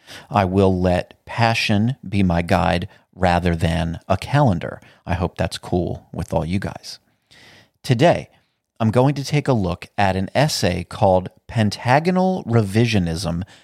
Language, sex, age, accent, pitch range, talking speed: English, male, 40-59, American, 95-125 Hz, 140 wpm